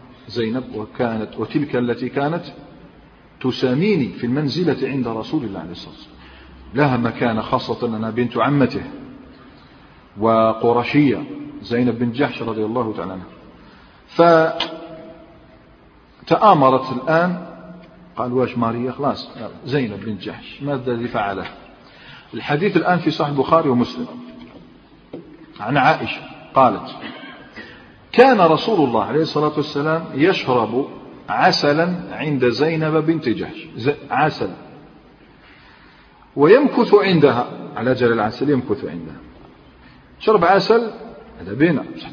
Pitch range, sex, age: 120-165 Hz, male, 40-59